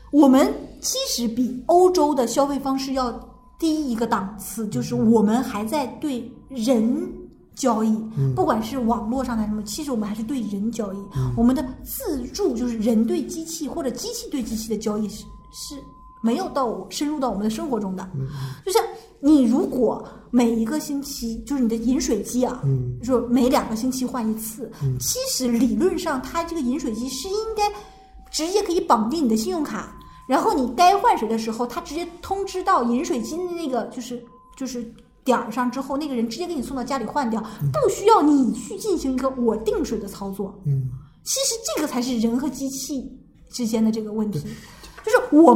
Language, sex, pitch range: Chinese, female, 225-305 Hz